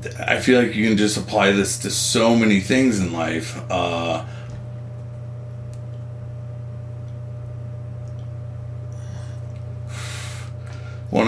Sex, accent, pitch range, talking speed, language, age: male, American, 100-120 Hz, 85 wpm, English, 40-59